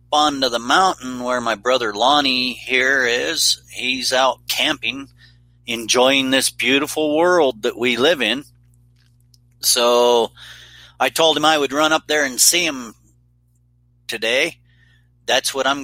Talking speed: 135 wpm